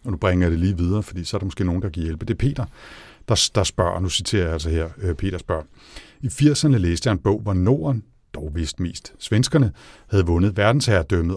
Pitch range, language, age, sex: 90-110 Hz, Danish, 60-79, male